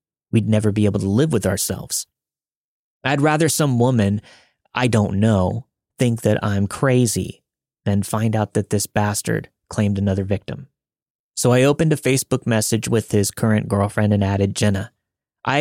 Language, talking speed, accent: English, 160 wpm, American